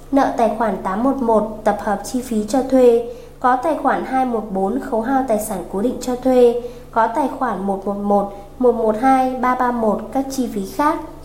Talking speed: 170 wpm